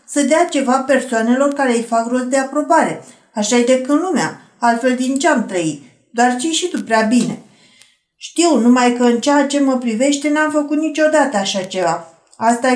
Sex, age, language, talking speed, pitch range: female, 50-69, Romanian, 190 wpm, 235-280 Hz